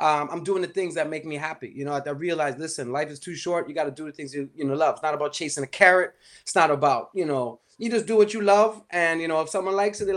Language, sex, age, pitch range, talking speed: English, male, 20-39, 145-185 Hz, 320 wpm